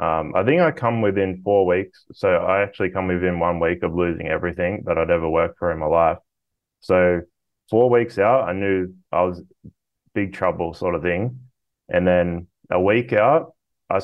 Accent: Australian